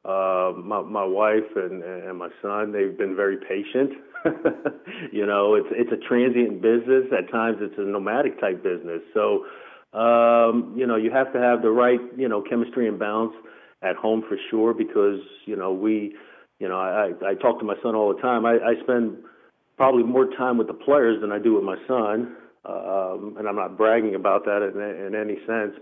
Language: English